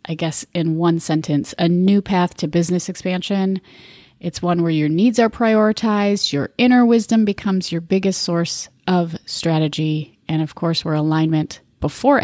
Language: English